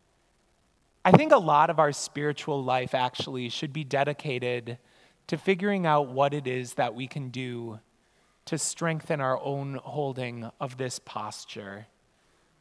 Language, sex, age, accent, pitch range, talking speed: English, male, 30-49, American, 130-165 Hz, 145 wpm